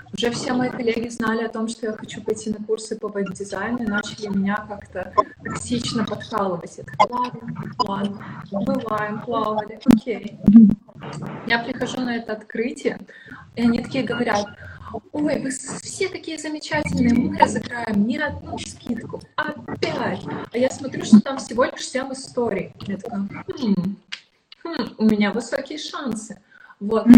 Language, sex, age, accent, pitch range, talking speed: Russian, female, 20-39, native, 200-250 Hz, 140 wpm